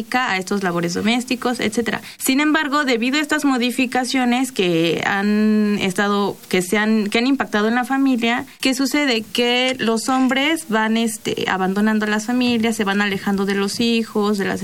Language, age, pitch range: Spanish, 20-39, 205-245 Hz